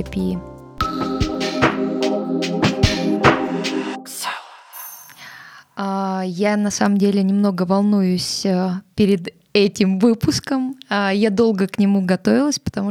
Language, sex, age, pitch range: Russian, female, 20-39, 195-225 Hz